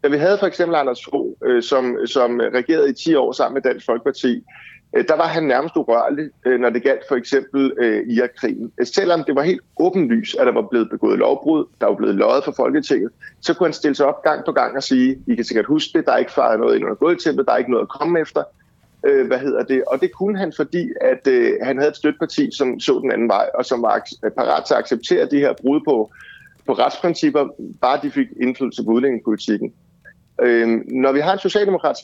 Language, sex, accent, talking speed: Danish, male, native, 240 wpm